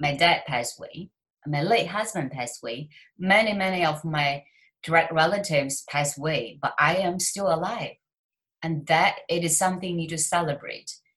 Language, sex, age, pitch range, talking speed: English, female, 30-49, 160-230 Hz, 165 wpm